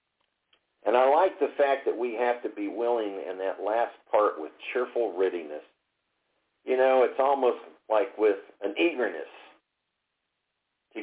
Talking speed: 145 wpm